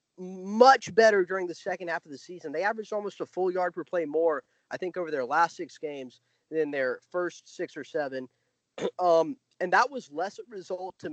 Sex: male